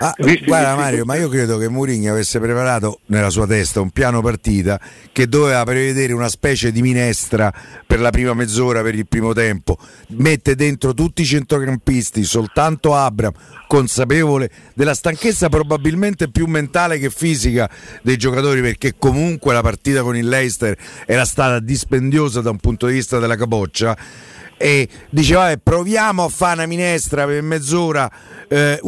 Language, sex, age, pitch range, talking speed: Italian, male, 50-69, 125-160 Hz, 155 wpm